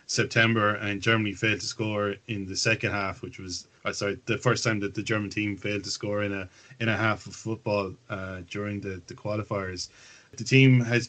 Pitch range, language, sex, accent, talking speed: 105-115 Hz, English, male, Irish, 205 wpm